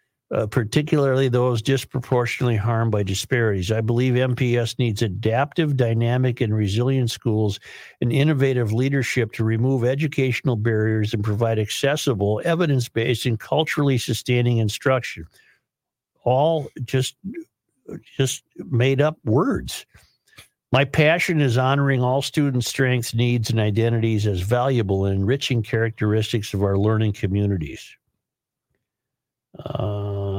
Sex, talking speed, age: male, 115 wpm, 60-79